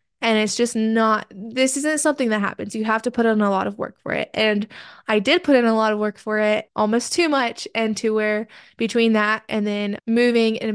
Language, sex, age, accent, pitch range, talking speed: English, female, 20-39, American, 210-235 Hz, 240 wpm